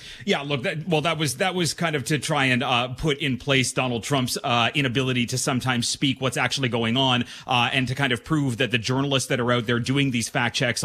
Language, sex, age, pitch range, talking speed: English, male, 30-49, 130-160 Hz, 250 wpm